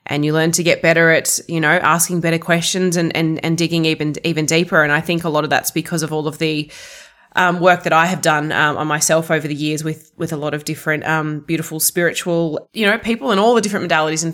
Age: 20-39